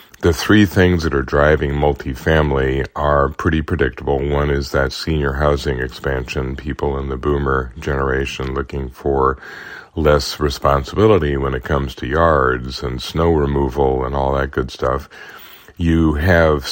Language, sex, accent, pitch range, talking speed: English, male, American, 65-75 Hz, 145 wpm